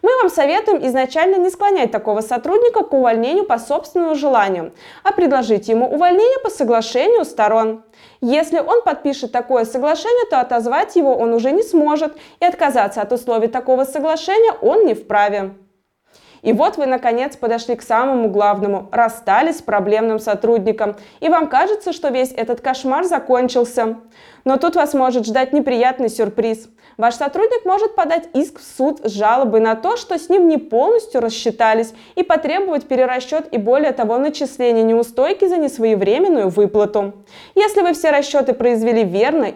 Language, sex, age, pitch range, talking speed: Russian, female, 20-39, 230-320 Hz, 155 wpm